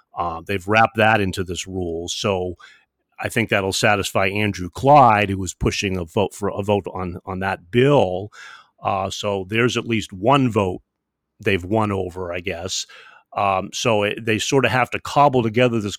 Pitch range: 100-120 Hz